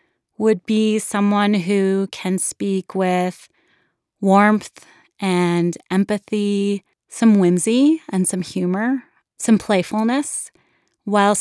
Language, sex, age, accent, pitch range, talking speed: English, female, 20-39, American, 180-210 Hz, 95 wpm